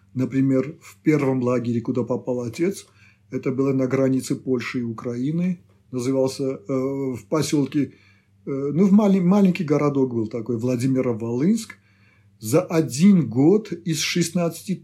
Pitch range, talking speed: 120-160 Hz, 115 wpm